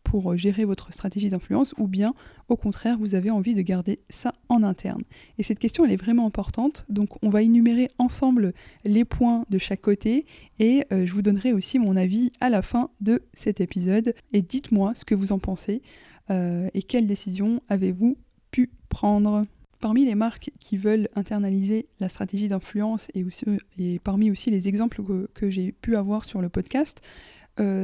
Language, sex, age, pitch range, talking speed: French, female, 20-39, 195-230 Hz, 185 wpm